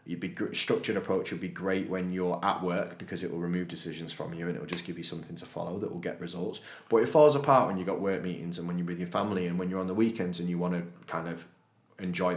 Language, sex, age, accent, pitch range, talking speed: English, male, 20-39, British, 90-100 Hz, 280 wpm